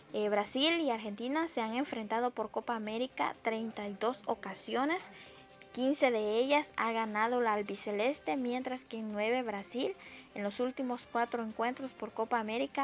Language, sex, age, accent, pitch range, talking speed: Spanish, female, 10-29, American, 220-265 Hz, 145 wpm